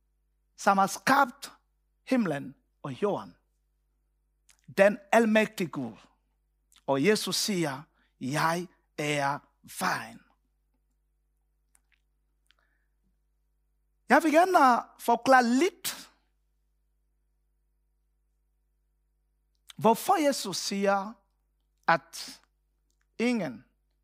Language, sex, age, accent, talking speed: Danish, male, 50-69, Nigerian, 60 wpm